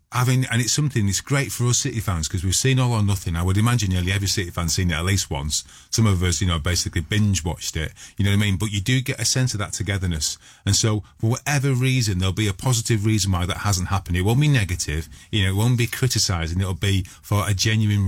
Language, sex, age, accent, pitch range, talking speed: English, male, 30-49, British, 95-115 Hz, 265 wpm